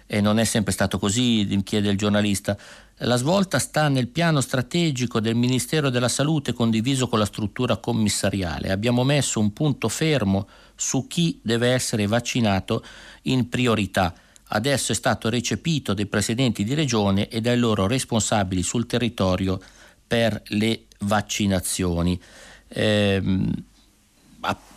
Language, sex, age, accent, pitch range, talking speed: Italian, male, 50-69, native, 100-125 Hz, 130 wpm